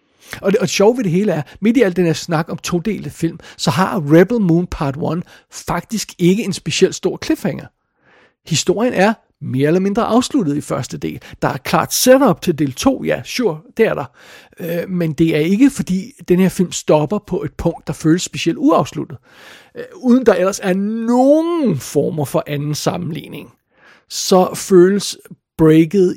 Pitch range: 155-195 Hz